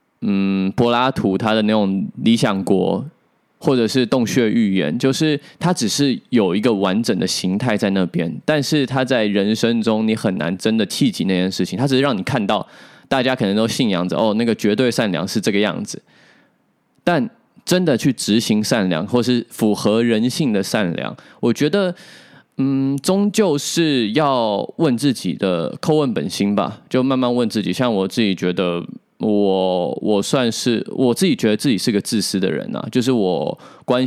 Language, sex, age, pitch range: Chinese, male, 20-39, 100-145 Hz